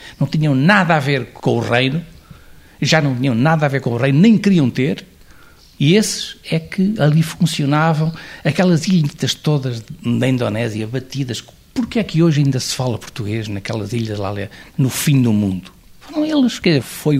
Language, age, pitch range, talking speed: Portuguese, 60-79, 110-155 Hz, 180 wpm